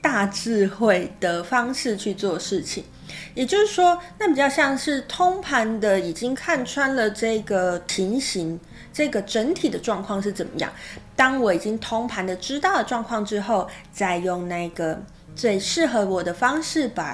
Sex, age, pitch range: female, 20-39, 180-270 Hz